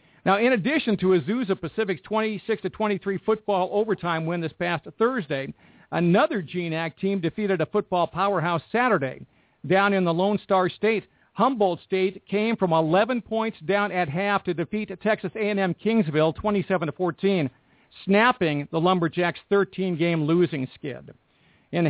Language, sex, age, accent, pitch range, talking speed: English, male, 50-69, American, 170-210 Hz, 135 wpm